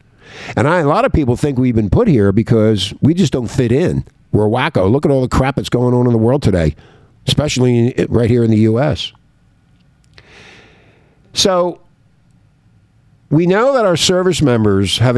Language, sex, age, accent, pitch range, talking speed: English, male, 50-69, American, 110-150 Hz, 180 wpm